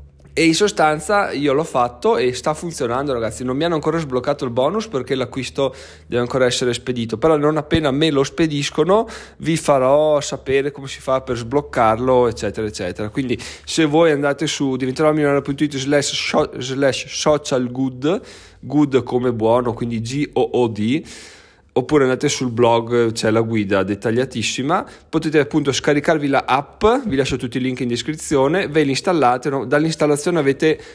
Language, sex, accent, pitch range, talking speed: Italian, male, native, 120-145 Hz, 150 wpm